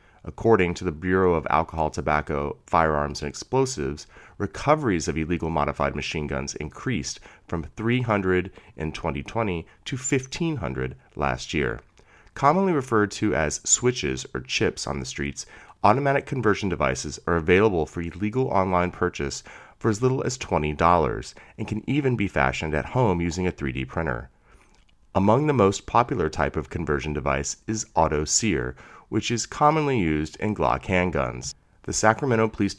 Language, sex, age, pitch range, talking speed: English, male, 30-49, 75-100 Hz, 150 wpm